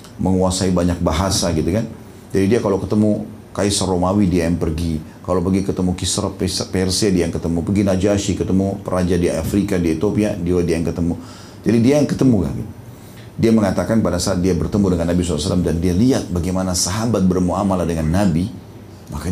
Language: Indonesian